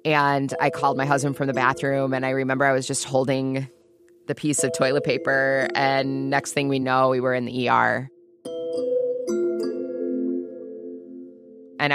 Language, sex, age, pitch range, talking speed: English, female, 20-39, 130-160 Hz, 155 wpm